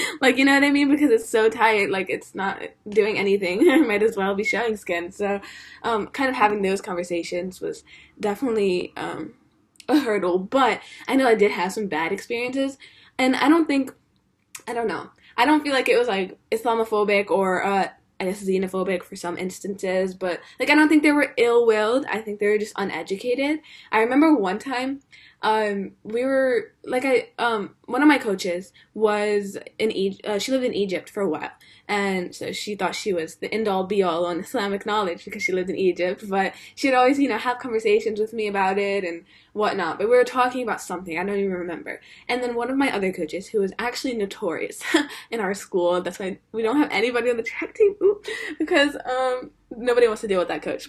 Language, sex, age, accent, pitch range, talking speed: English, female, 10-29, American, 195-260 Hz, 210 wpm